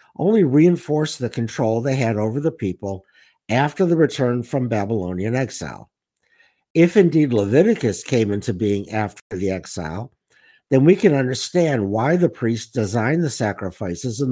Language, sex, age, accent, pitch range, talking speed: English, male, 60-79, American, 105-150 Hz, 145 wpm